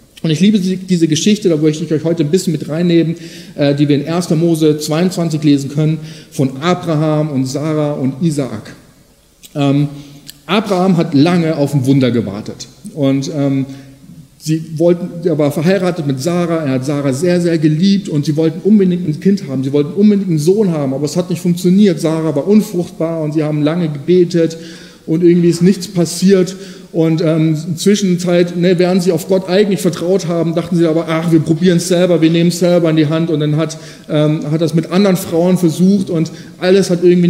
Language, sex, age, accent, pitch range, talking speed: German, male, 40-59, German, 150-180 Hz, 200 wpm